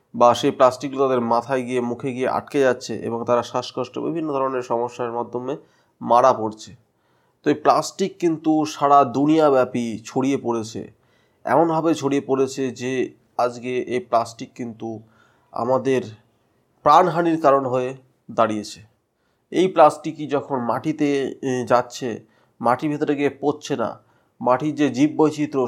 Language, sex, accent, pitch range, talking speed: Bengali, male, native, 120-145 Hz, 125 wpm